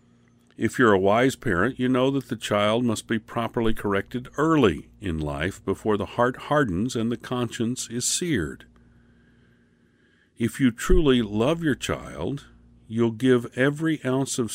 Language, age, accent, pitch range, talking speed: English, 50-69, American, 90-125 Hz, 155 wpm